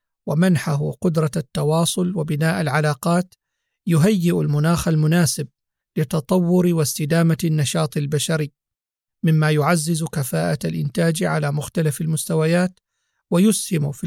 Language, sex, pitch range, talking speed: Arabic, male, 150-175 Hz, 90 wpm